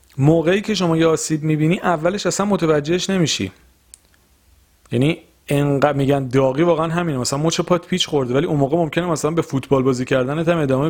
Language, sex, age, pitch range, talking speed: Persian, male, 40-59, 120-165 Hz, 160 wpm